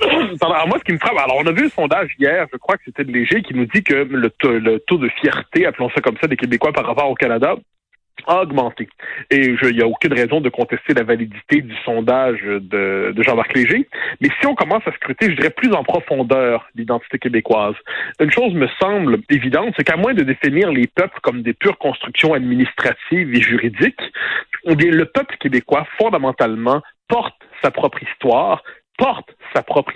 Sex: male